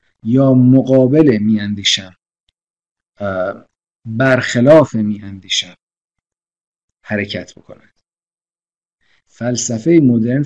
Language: Persian